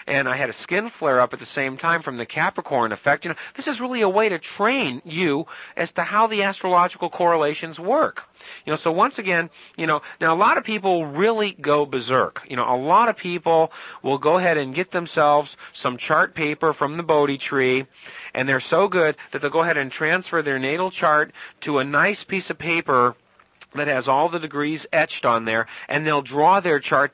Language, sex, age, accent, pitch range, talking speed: English, male, 40-59, American, 135-175 Hz, 215 wpm